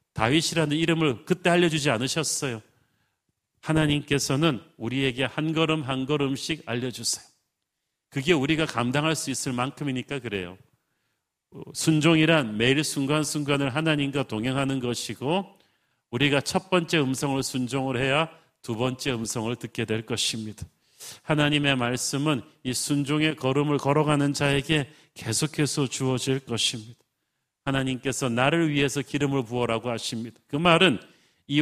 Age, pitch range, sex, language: 40-59, 120-150 Hz, male, Korean